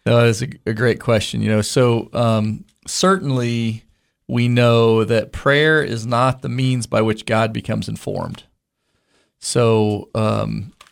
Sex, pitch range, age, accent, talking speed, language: male, 110-135 Hz, 40-59, American, 150 wpm, English